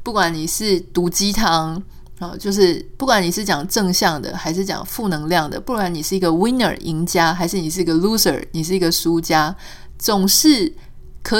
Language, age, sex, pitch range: Chinese, 20-39, female, 170-205 Hz